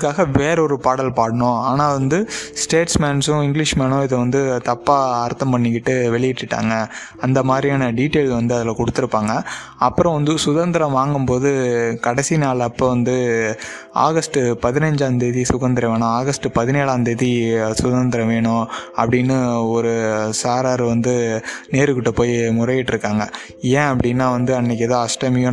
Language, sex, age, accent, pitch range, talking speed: Tamil, male, 20-39, native, 120-140 Hz, 120 wpm